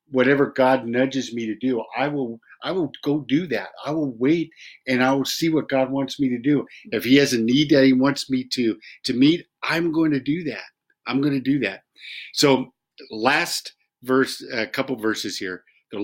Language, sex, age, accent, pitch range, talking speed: English, male, 50-69, American, 110-140 Hz, 215 wpm